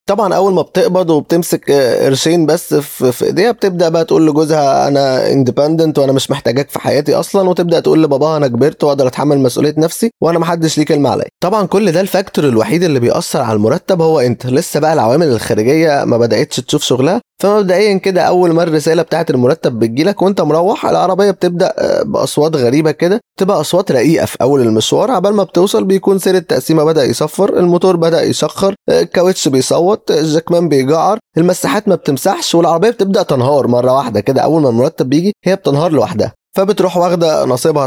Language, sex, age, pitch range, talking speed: Arabic, male, 20-39, 140-185 Hz, 175 wpm